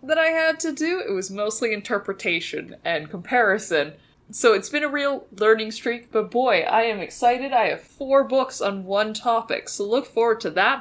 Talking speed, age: 195 wpm, 20-39